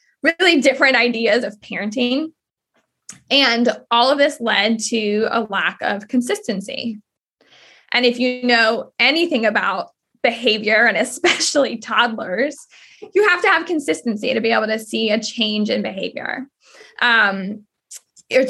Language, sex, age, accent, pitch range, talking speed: English, female, 20-39, American, 215-270 Hz, 130 wpm